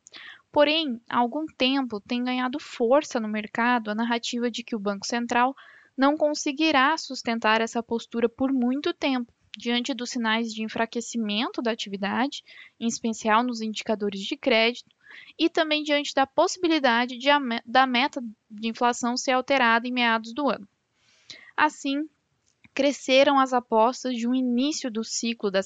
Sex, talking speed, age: female, 145 wpm, 10-29